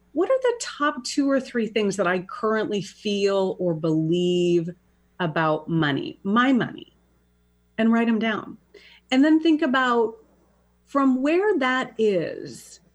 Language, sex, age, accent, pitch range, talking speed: English, female, 30-49, American, 170-235 Hz, 140 wpm